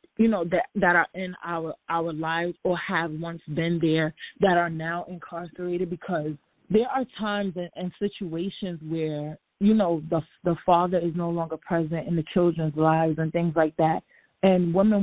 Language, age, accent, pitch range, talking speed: English, 20-39, American, 160-185 Hz, 180 wpm